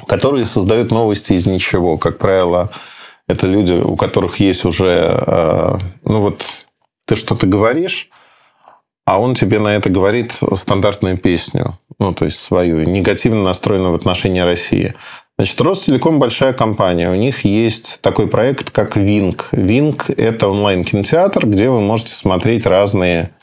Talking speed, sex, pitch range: 140 wpm, male, 95-135 Hz